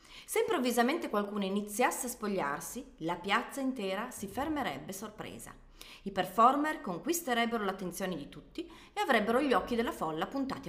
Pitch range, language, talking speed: 175-250 Hz, Italian, 140 wpm